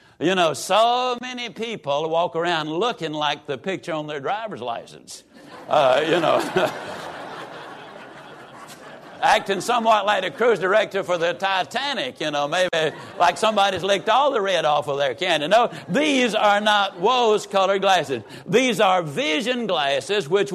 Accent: American